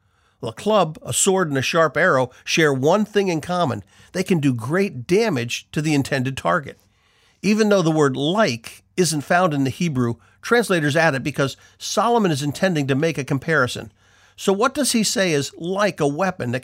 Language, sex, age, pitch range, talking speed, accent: English, male, 50-69, 120-180 Hz, 195 wpm, American